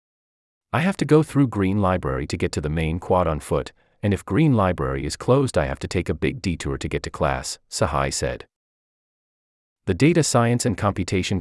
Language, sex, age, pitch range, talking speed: English, male, 30-49, 75-115 Hz, 205 wpm